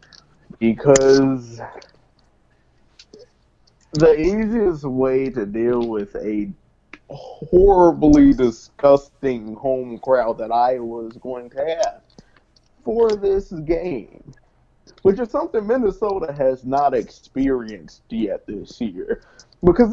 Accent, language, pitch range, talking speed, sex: American, English, 125-180 Hz, 95 wpm, male